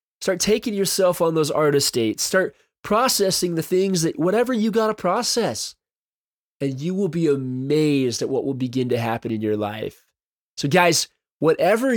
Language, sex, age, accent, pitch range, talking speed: English, male, 20-39, American, 140-195 Hz, 170 wpm